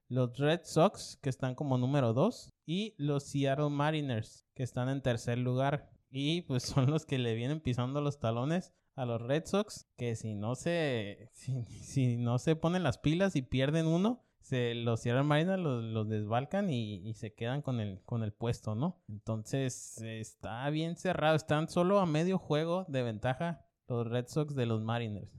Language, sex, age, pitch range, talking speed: Spanish, male, 20-39, 120-150 Hz, 185 wpm